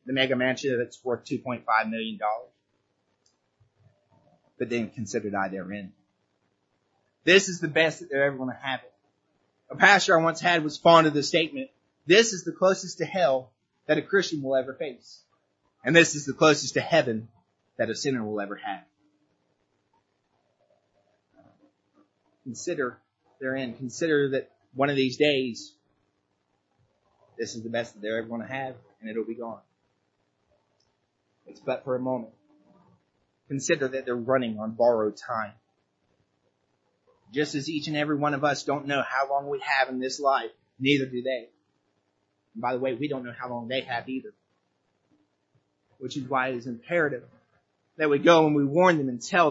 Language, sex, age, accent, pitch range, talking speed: English, male, 30-49, American, 110-145 Hz, 170 wpm